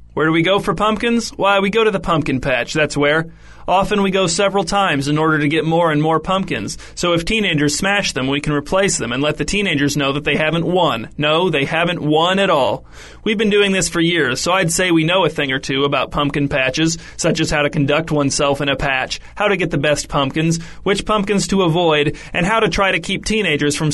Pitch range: 150-185 Hz